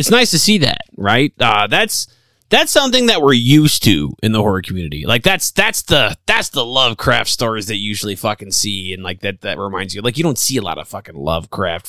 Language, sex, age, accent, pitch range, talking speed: English, male, 30-49, American, 95-150 Hz, 230 wpm